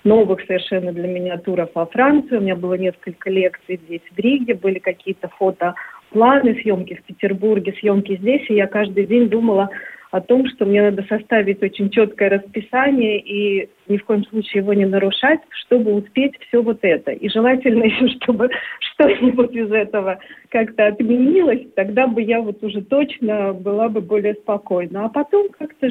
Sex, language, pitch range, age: female, Russian, 190-235 Hz, 40-59